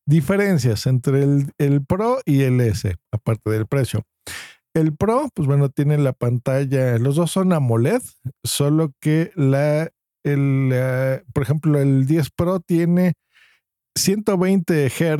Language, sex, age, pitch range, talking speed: Spanish, male, 50-69, 115-155 Hz, 135 wpm